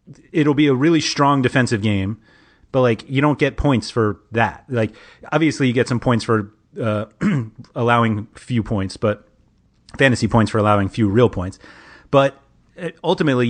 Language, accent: English, American